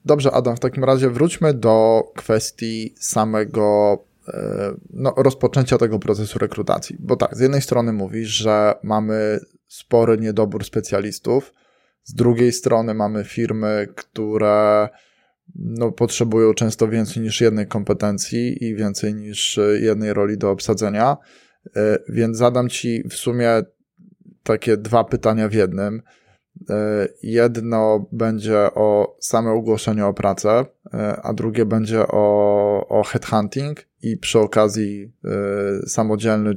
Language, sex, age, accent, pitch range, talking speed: Polish, male, 20-39, native, 105-120 Hz, 115 wpm